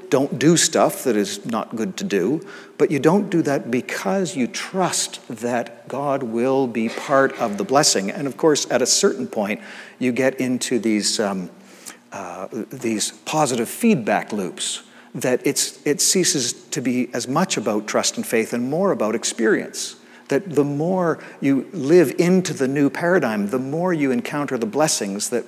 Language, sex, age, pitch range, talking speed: English, male, 50-69, 125-165 Hz, 175 wpm